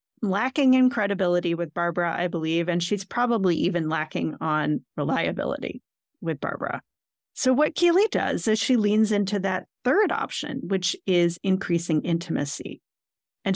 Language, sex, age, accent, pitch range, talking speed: English, female, 40-59, American, 175-240 Hz, 140 wpm